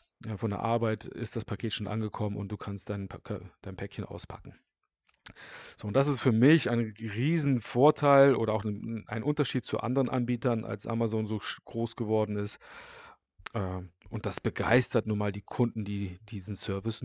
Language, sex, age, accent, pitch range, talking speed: German, male, 40-59, German, 105-140 Hz, 165 wpm